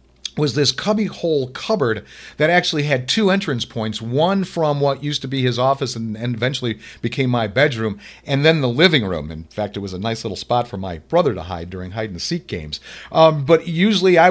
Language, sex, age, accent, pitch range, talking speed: English, male, 40-59, American, 115-155 Hz, 205 wpm